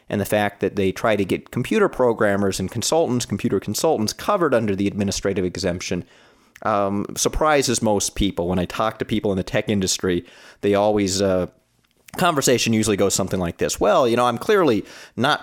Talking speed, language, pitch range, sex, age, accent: 185 wpm, English, 100-125 Hz, male, 30-49, American